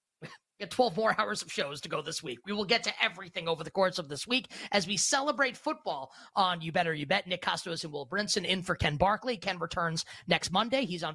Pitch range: 160-195 Hz